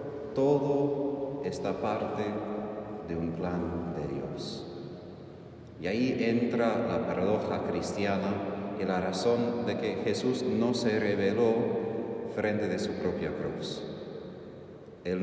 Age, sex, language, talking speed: 40-59, male, Spanish, 115 wpm